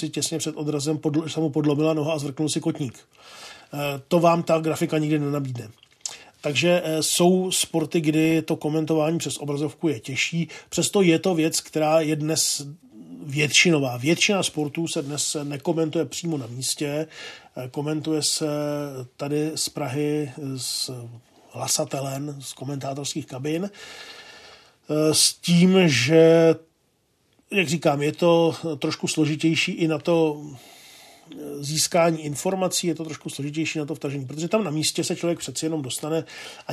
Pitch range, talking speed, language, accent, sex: 145-160 Hz, 140 wpm, Czech, native, male